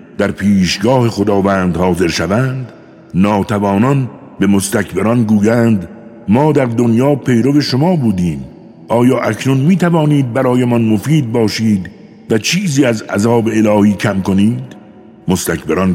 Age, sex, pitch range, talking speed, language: 60-79, male, 90-125 Hz, 115 wpm, Persian